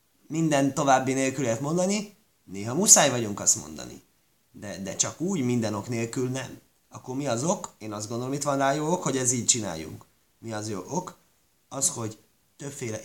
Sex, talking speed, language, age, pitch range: male, 190 wpm, Hungarian, 30-49, 110-145 Hz